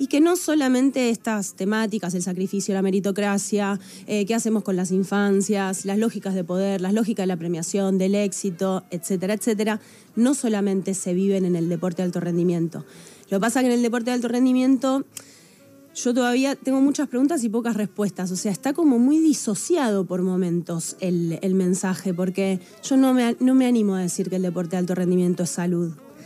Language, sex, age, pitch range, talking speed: Spanish, female, 20-39, 190-245 Hz, 195 wpm